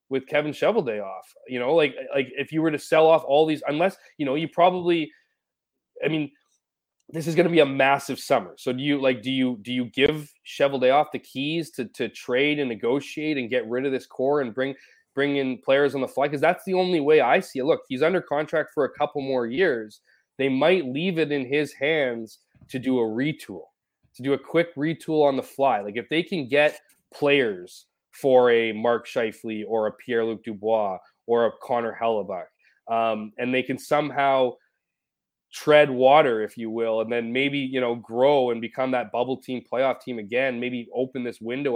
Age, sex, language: 20-39, male, English